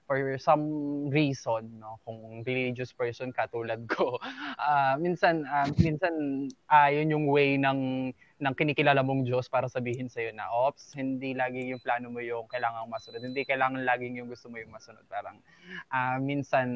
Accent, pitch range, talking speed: native, 125-150 Hz, 170 wpm